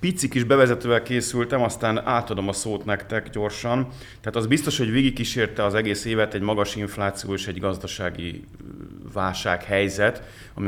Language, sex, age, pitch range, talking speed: Hungarian, male, 30-49, 95-110 Hz, 150 wpm